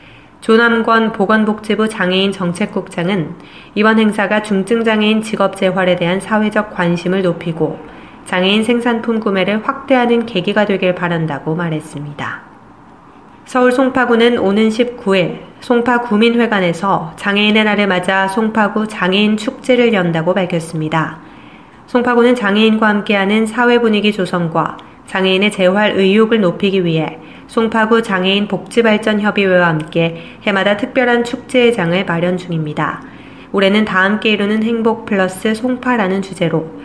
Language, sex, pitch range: Korean, female, 180-220 Hz